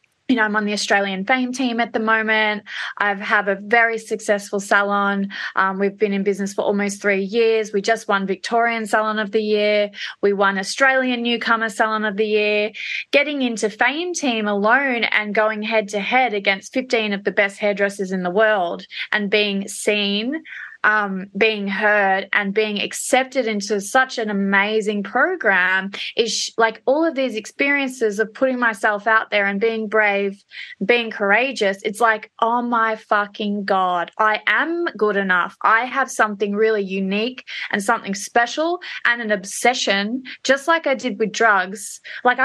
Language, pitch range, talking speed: English, 205-235 Hz, 165 wpm